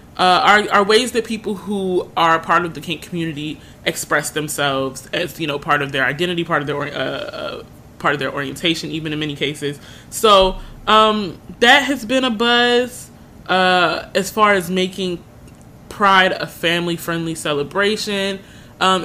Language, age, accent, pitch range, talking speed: English, 20-39, American, 160-205 Hz, 165 wpm